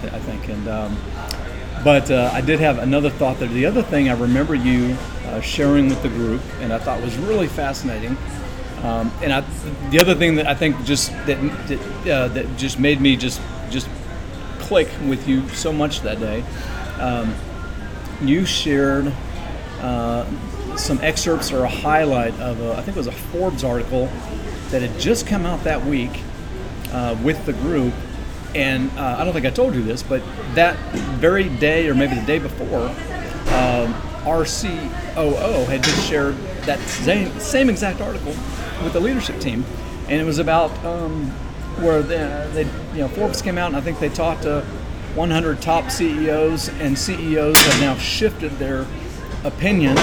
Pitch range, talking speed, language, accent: 115-150 Hz, 175 wpm, English, American